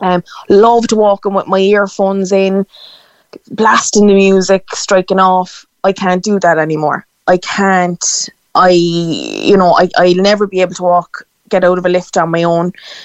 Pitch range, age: 170-200 Hz, 20-39